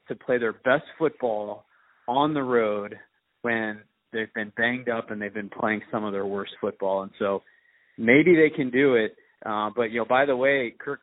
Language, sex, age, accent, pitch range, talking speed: English, male, 30-49, American, 110-135 Hz, 200 wpm